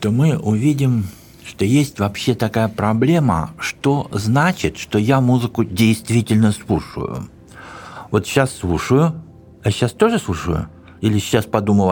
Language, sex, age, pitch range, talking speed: Russian, male, 60-79, 95-140 Hz, 125 wpm